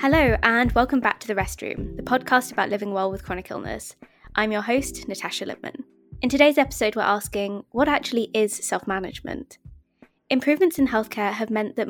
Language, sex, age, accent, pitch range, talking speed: English, female, 20-39, British, 195-235 Hz, 175 wpm